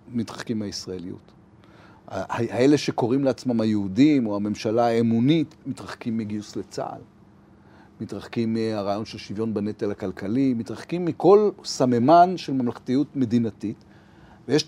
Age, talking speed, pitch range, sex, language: 40-59, 100 wpm, 105-135 Hz, male, Hebrew